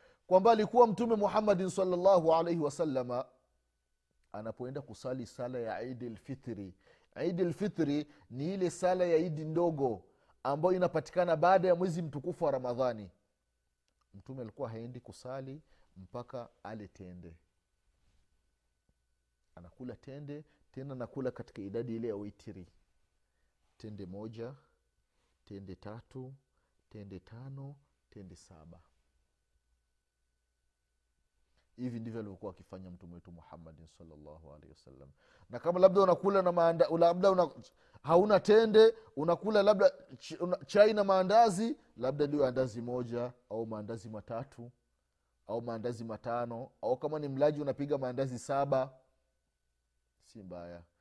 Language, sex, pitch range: Swahili, male, 95-160 Hz